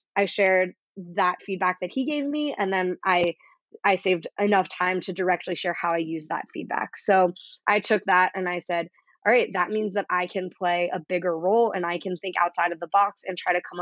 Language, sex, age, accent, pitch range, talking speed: English, female, 20-39, American, 180-200 Hz, 230 wpm